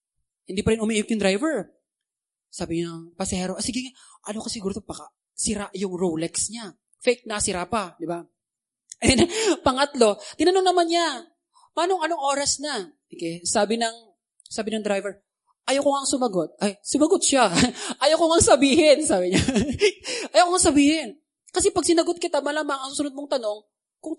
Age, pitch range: 20-39, 205-310 Hz